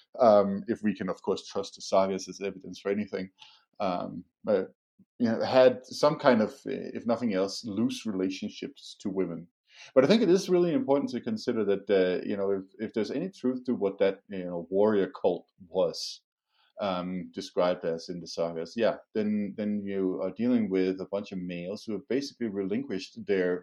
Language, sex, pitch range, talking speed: English, male, 90-110 Hz, 195 wpm